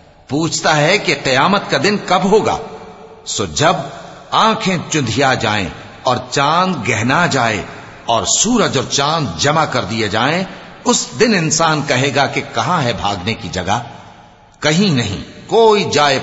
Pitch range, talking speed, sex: 110-170 Hz, 140 wpm, male